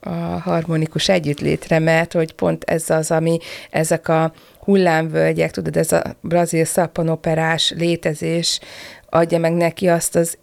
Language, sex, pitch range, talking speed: Hungarian, female, 160-185 Hz, 130 wpm